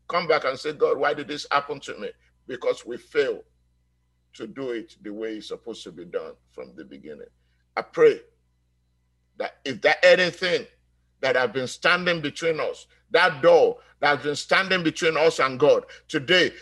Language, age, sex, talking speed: English, 50-69, male, 180 wpm